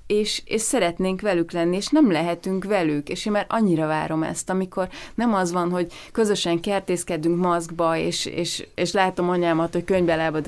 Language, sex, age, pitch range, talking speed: Hungarian, female, 30-49, 160-185 Hz, 170 wpm